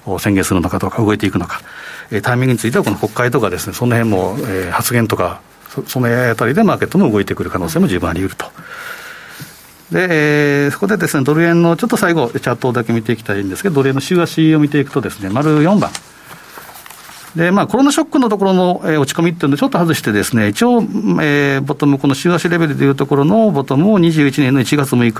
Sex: male